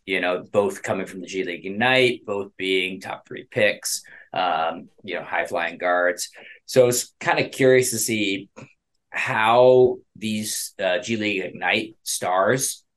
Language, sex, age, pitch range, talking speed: English, male, 20-39, 95-125 Hz, 155 wpm